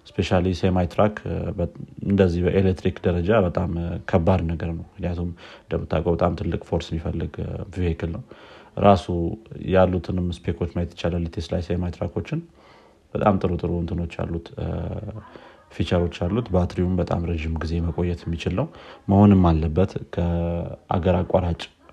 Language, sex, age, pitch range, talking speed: Amharic, male, 30-49, 85-100 Hz, 110 wpm